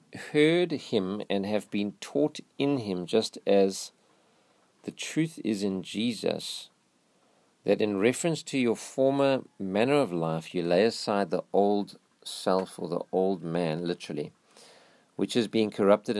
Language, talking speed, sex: English, 145 wpm, male